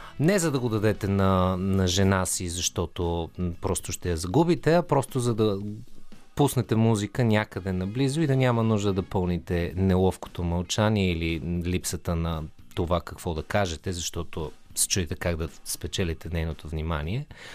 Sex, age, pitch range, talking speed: male, 30-49, 90-125 Hz, 155 wpm